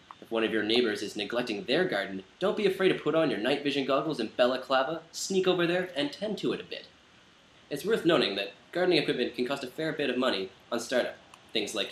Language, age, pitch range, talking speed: English, 20-39, 120-165 Hz, 240 wpm